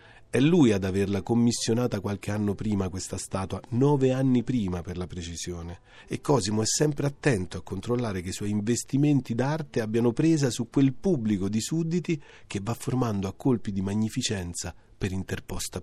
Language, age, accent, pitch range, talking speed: Italian, 40-59, native, 100-135 Hz, 165 wpm